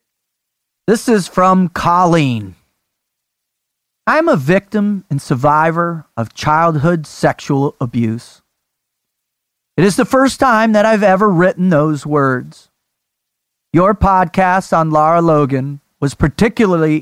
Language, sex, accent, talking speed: English, male, American, 110 wpm